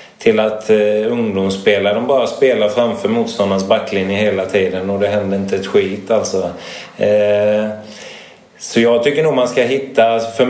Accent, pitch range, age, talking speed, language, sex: Swedish, 105-130 Hz, 20-39, 160 wpm, English, male